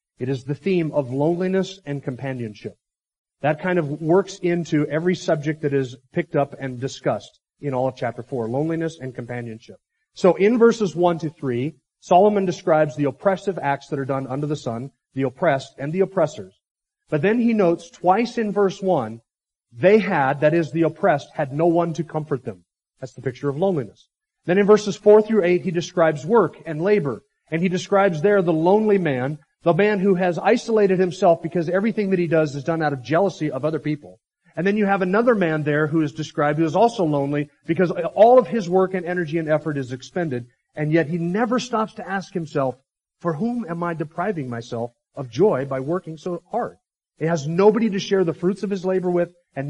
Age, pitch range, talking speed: 40-59, 140-190 Hz, 205 wpm